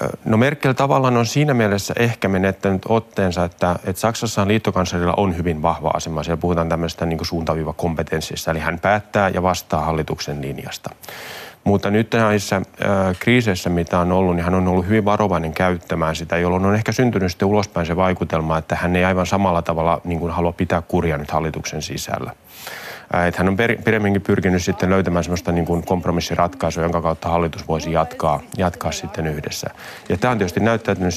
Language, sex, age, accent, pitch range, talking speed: Finnish, male, 30-49, native, 85-100 Hz, 170 wpm